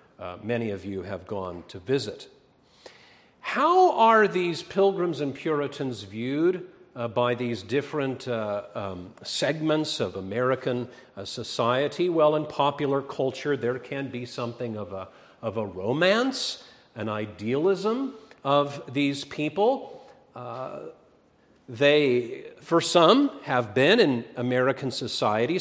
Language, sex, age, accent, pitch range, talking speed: English, male, 50-69, American, 110-155 Hz, 125 wpm